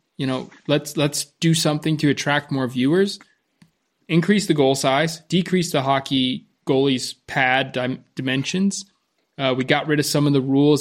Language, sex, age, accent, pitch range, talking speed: English, male, 20-39, American, 130-160 Hz, 160 wpm